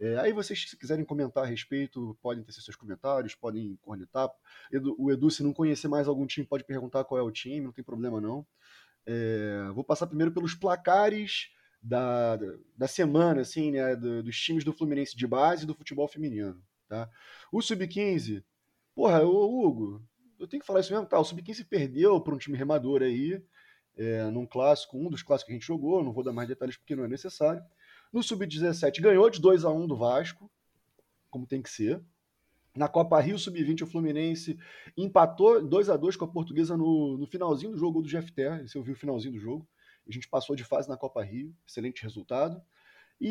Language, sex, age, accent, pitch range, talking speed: Portuguese, male, 20-39, Brazilian, 125-165 Hz, 195 wpm